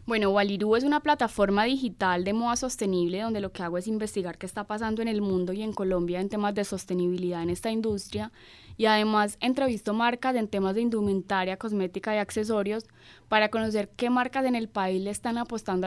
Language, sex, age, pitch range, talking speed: Spanish, female, 10-29, 195-235 Hz, 195 wpm